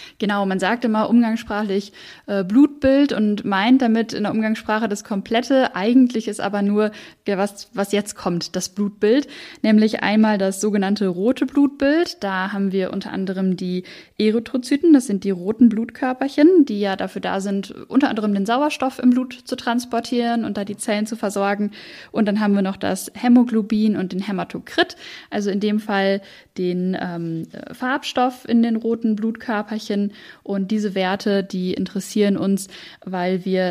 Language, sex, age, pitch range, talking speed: German, female, 10-29, 195-235 Hz, 160 wpm